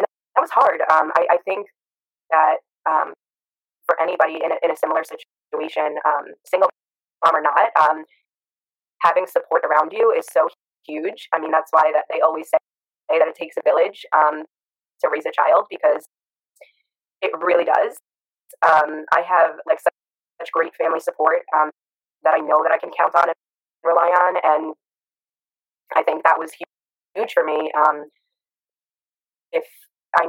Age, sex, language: 20-39, female, English